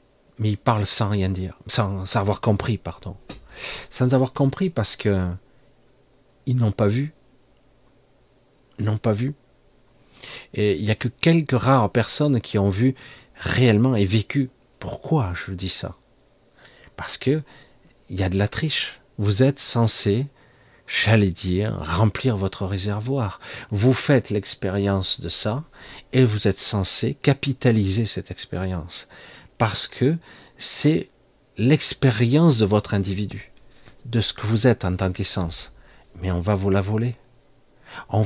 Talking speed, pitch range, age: 140 wpm, 105-130 Hz, 50-69